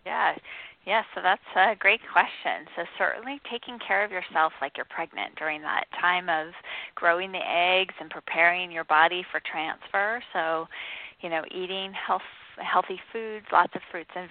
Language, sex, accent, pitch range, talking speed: English, female, American, 175-220 Hz, 170 wpm